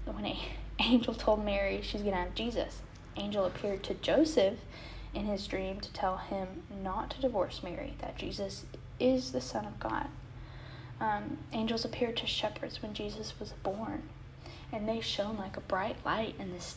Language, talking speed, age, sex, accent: English, 170 wpm, 10-29, female, American